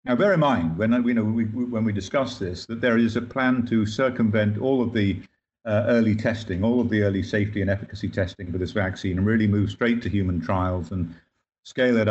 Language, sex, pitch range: English, male, 95-115 Hz